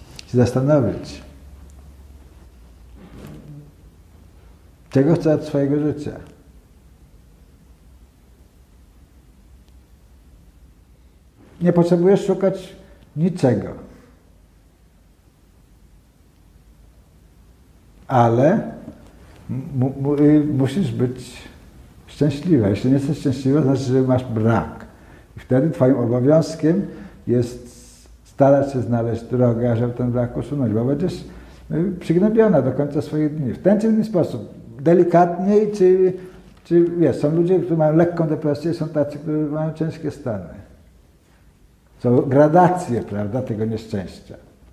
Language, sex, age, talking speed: Polish, male, 60-79, 100 wpm